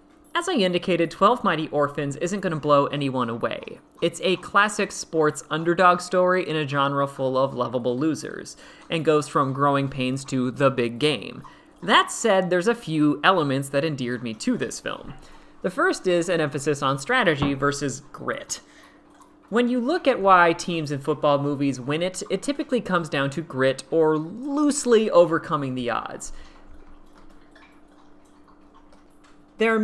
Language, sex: English, male